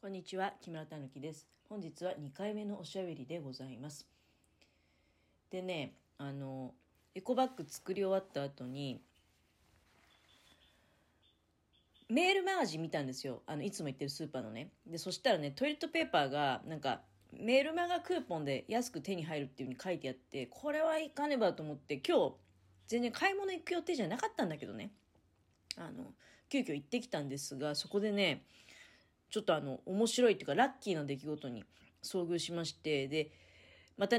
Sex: female